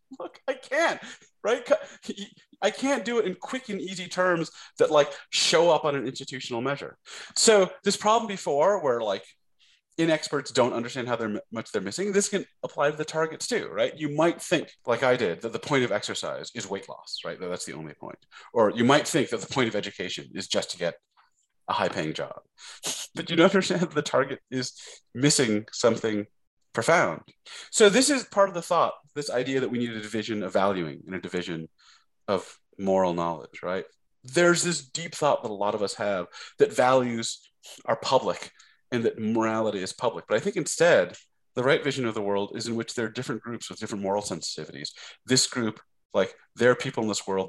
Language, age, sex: English, 30-49, male